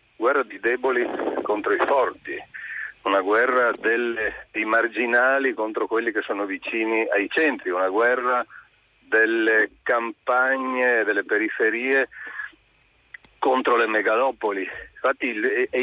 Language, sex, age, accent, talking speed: Italian, male, 50-69, native, 110 wpm